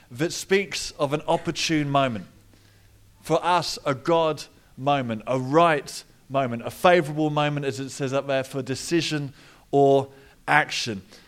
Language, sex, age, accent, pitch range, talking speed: English, male, 30-49, British, 125-155 Hz, 140 wpm